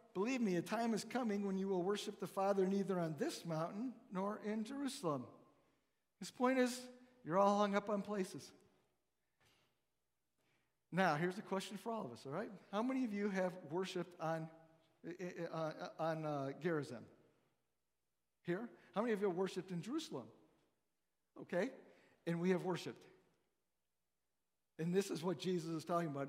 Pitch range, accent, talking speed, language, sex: 165-210 Hz, American, 160 wpm, English, male